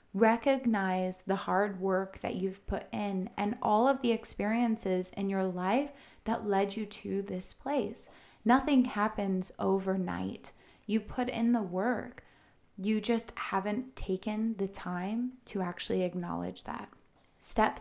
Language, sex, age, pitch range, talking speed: English, female, 20-39, 190-225 Hz, 140 wpm